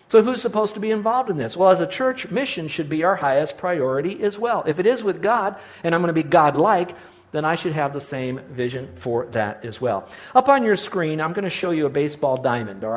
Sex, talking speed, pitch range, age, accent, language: male, 255 wpm, 150-195 Hz, 50-69, American, English